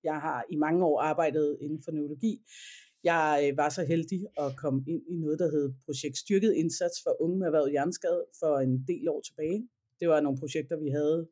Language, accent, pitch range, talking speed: Danish, native, 145-180 Hz, 200 wpm